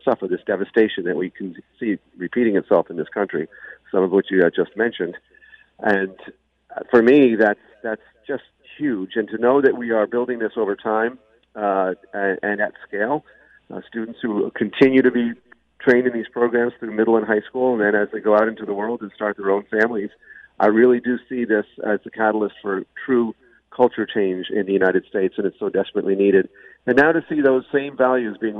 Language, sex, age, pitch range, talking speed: English, male, 50-69, 100-120 Hz, 210 wpm